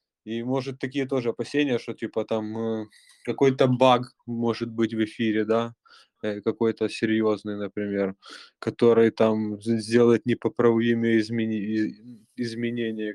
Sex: male